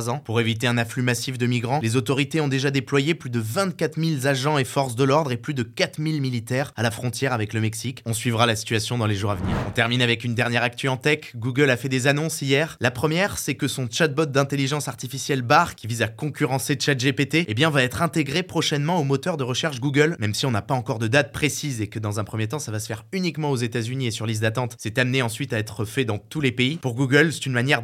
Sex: male